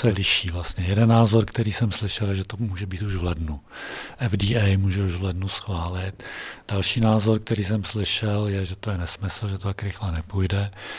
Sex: male